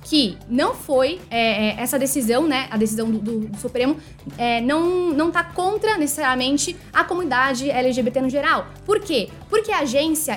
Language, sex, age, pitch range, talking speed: Portuguese, female, 10-29, 245-330 Hz, 160 wpm